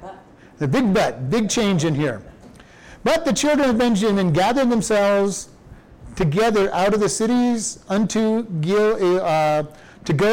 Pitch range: 160-210 Hz